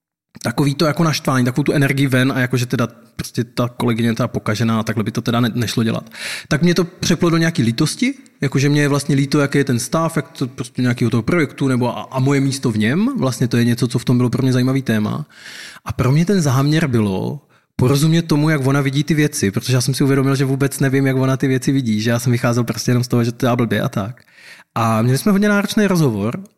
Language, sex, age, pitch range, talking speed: Czech, male, 20-39, 120-145 Hz, 250 wpm